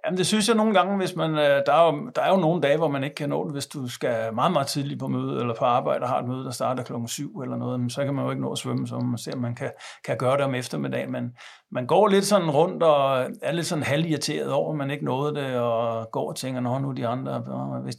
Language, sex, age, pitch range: Danish, male, 60-79, 120-155 Hz